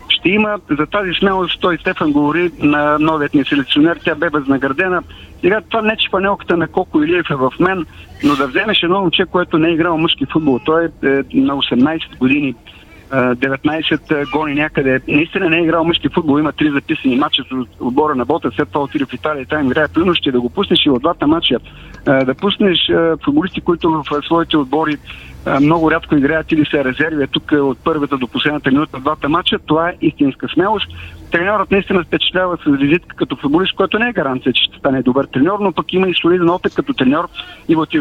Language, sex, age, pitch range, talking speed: Bulgarian, male, 50-69, 145-185 Hz, 200 wpm